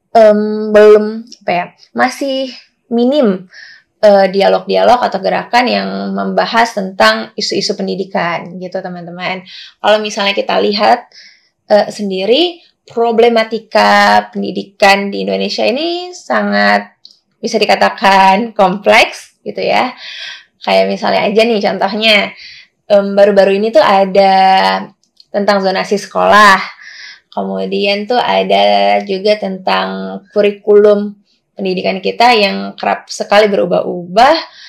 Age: 20-39